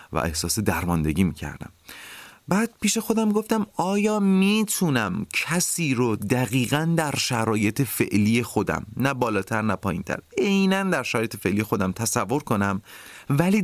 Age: 30-49